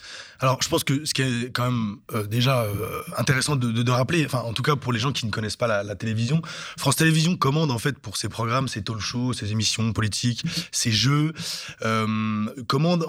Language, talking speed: French, 220 wpm